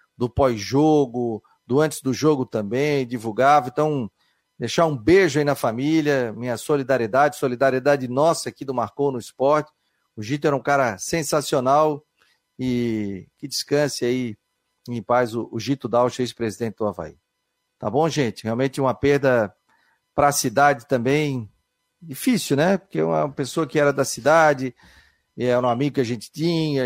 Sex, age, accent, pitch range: male, 40-59, Brazilian, 125-150 Hz